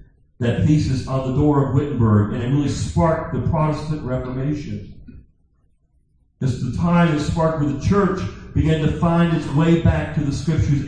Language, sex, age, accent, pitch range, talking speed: English, male, 50-69, American, 105-165 Hz, 170 wpm